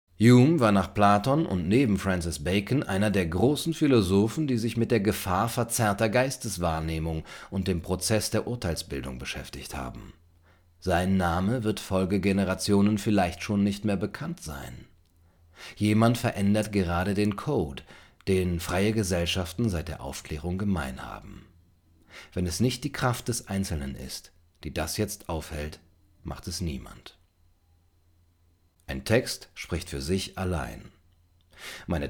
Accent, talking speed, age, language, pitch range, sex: German, 135 wpm, 40-59, German, 85-110 Hz, male